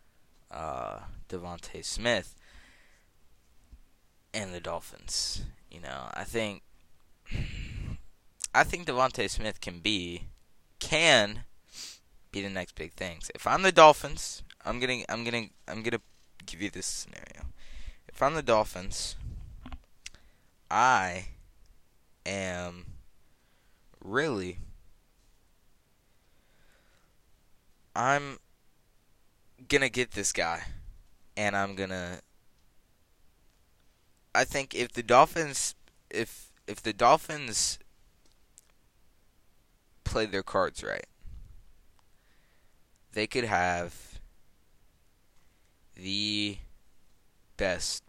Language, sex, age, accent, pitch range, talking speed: English, male, 20-39, American, 85-110 Hz, 90 wpm